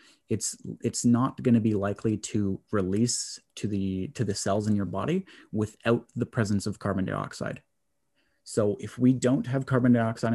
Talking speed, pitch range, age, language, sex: 170 wpm, 100-115 Hz, 30-49, English, male